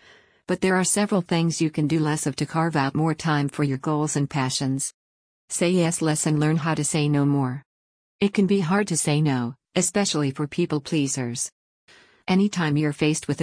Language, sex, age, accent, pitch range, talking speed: English, female, 50-69, American, 145-175 Hz, 200 wpm